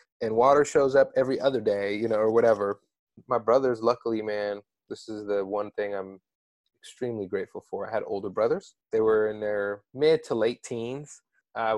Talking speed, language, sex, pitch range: 190 wpm, English, male, 105-145 Hz